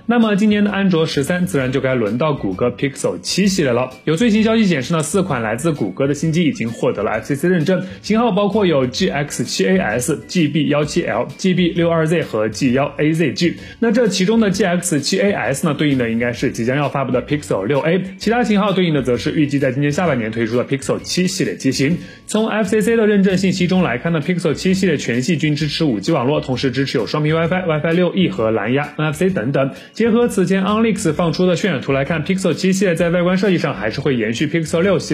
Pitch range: 135-185 Hz